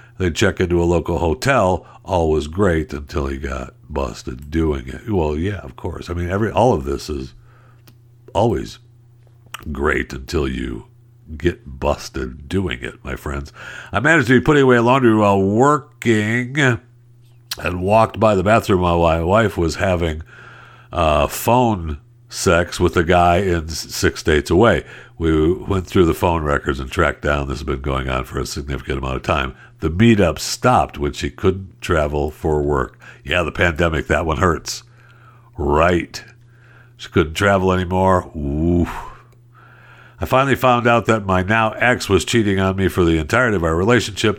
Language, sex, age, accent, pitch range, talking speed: English, male, 60-79, American, 80-115 Hz, 165 wpm